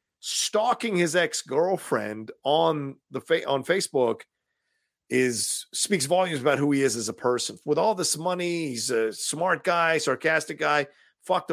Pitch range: 120-160 Hz